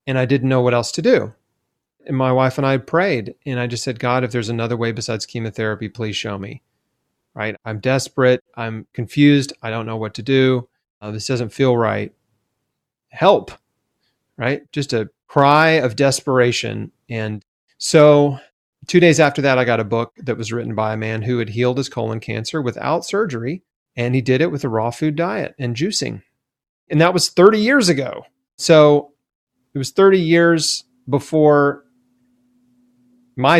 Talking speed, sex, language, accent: 180 wpm, male, English, American